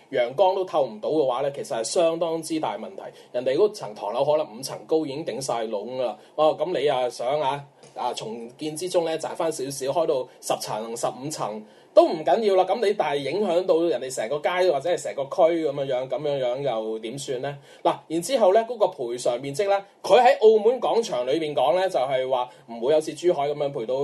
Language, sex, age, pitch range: Chinese, male, 20-39, 150-225 Hz